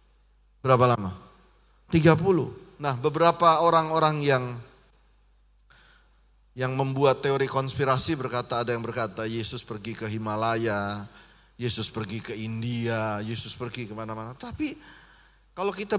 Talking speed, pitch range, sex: 115 wpm, 115-165 Hz, male